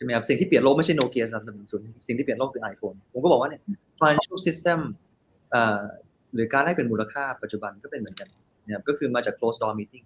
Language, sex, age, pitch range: Thai, male, 20-39, 115-140 Hz